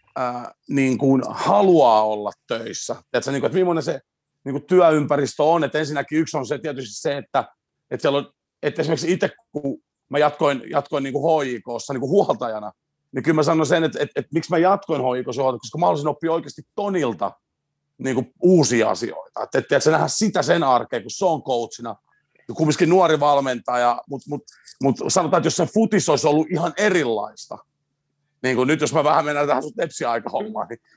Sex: male